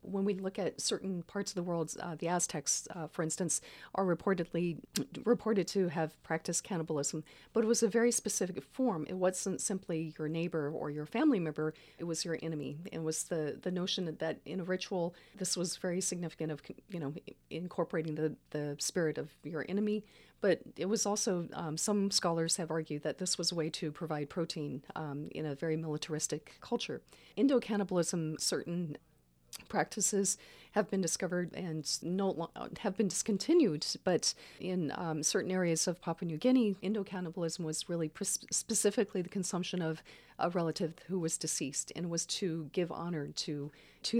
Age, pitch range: 40-59, 160-190 Hz